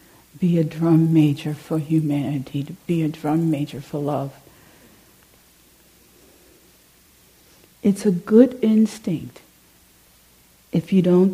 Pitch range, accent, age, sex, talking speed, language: 140-185 Hz, American, 60-79, female, 105 wpm, English